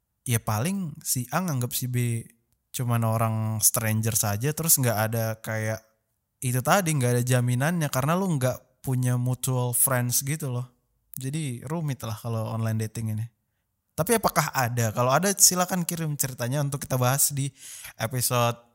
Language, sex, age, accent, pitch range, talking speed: Indonesian, male, 20-39, native, 115-150 Hz, 155 wpm